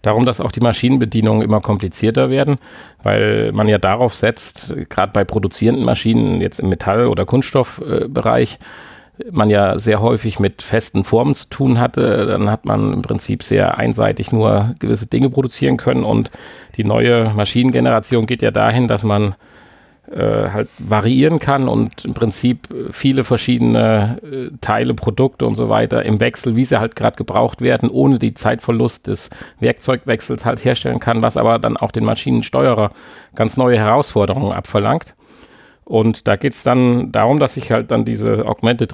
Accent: German